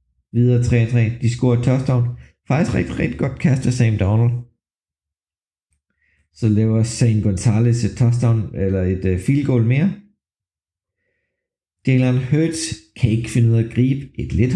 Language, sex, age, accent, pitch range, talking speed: Danish, male, 50-69, native, 100-135 Hz, 140 wpm